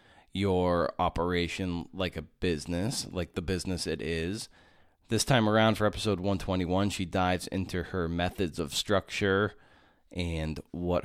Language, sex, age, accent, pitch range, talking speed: English, male, 30-49, American, 80-100 Hz, 135 wpm